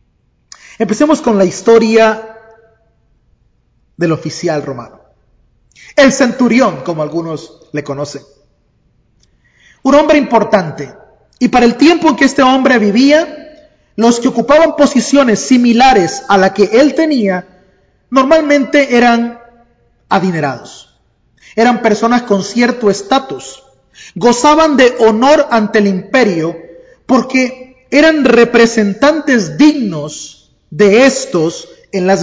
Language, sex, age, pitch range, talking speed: English, male, 30-49, 185-260 Hz, 105 wpm